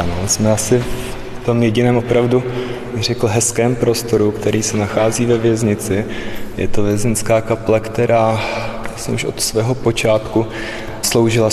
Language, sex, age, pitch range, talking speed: Czech, male, 20-39, 105-110 Hz, 135 wpm